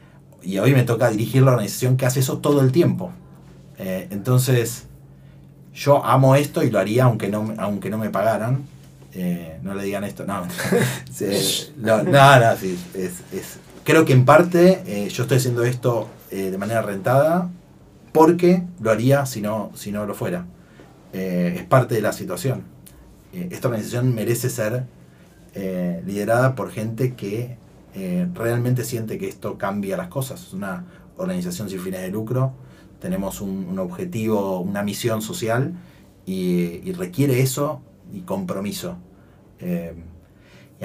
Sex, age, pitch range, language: male, 30-49, 100-150 Hz, Spanish